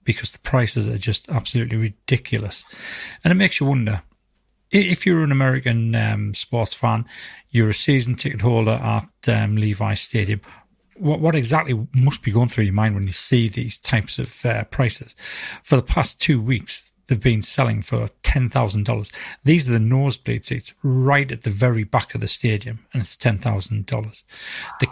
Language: English